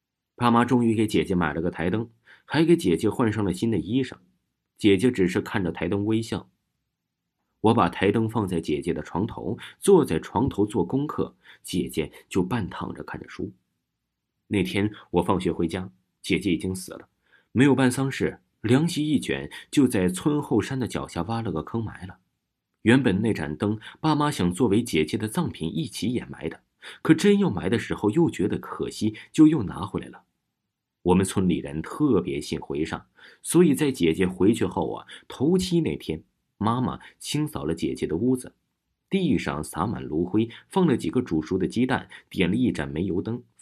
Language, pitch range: Chinese, 85-135 Hz